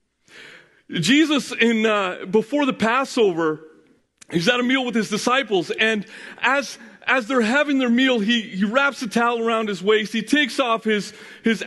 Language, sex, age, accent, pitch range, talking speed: English, male, 40-59, American, 180-250 Hz, 170 wpm